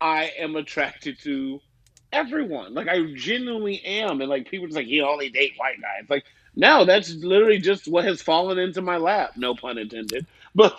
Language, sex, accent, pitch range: English, male, American, 120-175 Hz